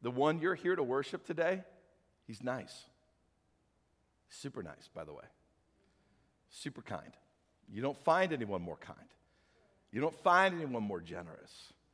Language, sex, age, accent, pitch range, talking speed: English, male, 50-69, American, 140-195 Hz, 140 wpm